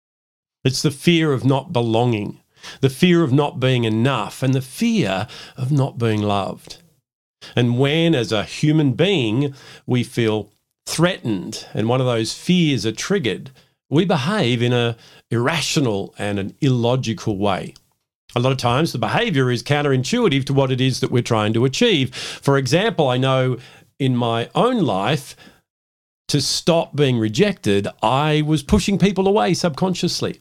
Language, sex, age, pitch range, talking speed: English, male, 50-69, 115-150 Hz, 155 wpm